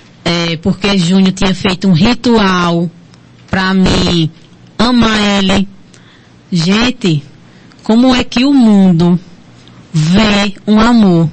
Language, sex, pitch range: Portuguese, female, 180-210 Hz